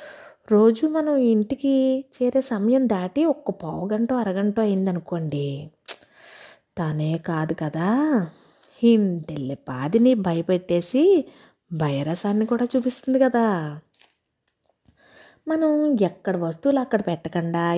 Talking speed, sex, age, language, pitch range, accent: 85 wpm, female, 20-39, Telugu, 165-230 Hz, native